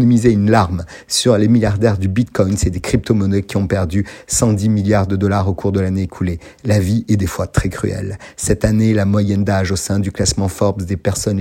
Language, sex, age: French, male, 50-69